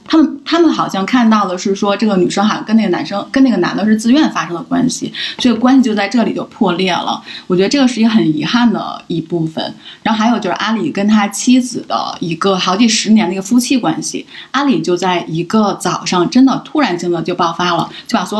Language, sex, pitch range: Chinese, female, 190-250 Hz